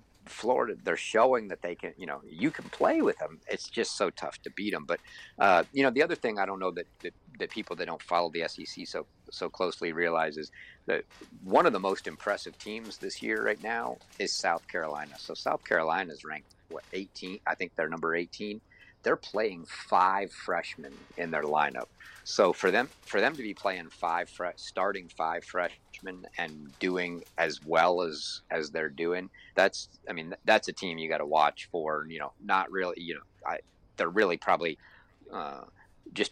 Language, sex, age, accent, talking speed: English, male, 50-69, American, 195 wpm